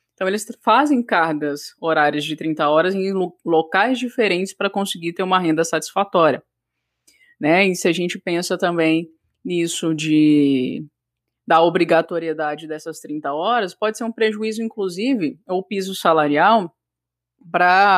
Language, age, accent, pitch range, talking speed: Portuguese, 20-39, Brazilian, 155-205 Hz, 130 wpm